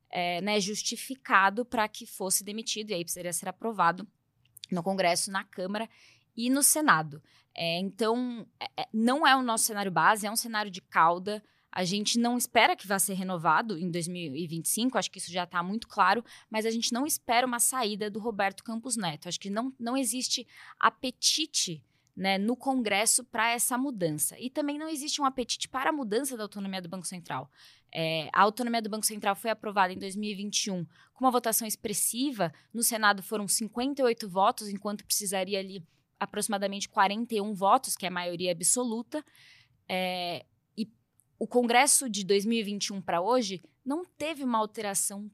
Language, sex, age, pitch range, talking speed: Portuguese, female, 10-29, 185-235 Hz, 165 wpm